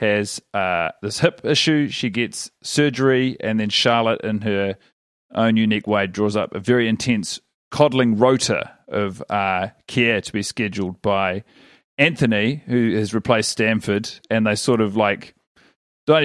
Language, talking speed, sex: English, 150 wpm, male